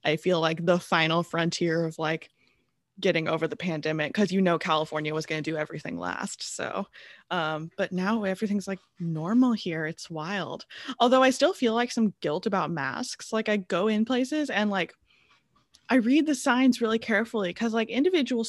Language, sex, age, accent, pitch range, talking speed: English, female, 20-39, American, 170-225 Hz, 185 wpm